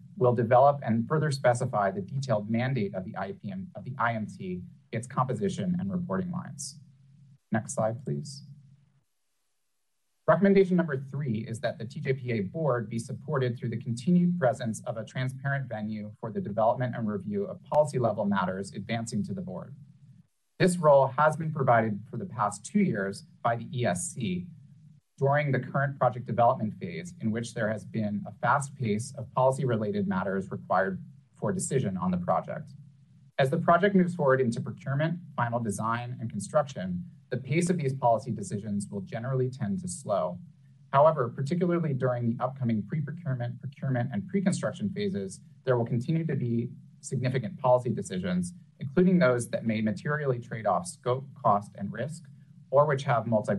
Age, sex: 30-49, male